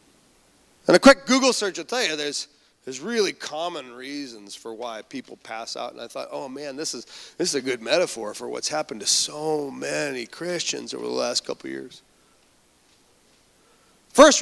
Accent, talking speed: American, 185 wpm